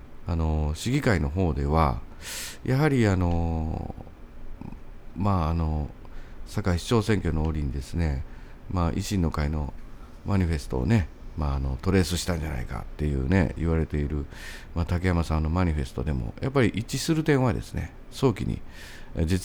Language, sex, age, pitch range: Japanese, male, 50-69, 75-105 Hz